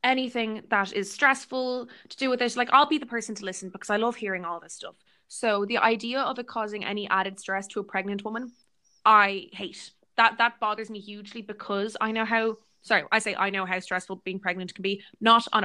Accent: Irish